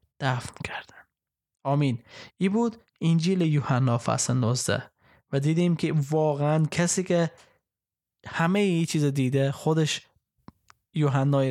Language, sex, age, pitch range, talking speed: Persian, male, 20-39, 135-165 Hz, 110 wpm